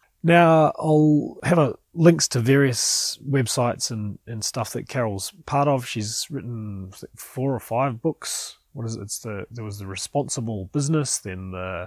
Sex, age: male, 30-49